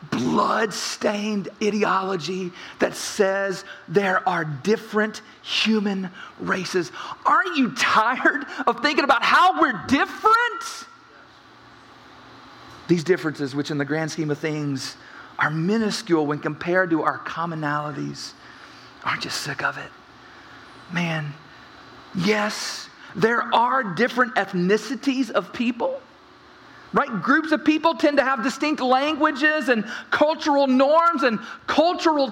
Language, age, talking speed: English, 40-59, 115 wpm